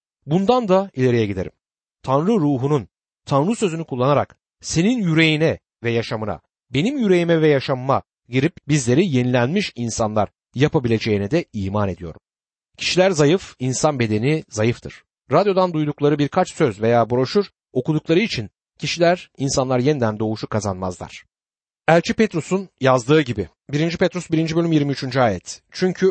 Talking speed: 125 wpm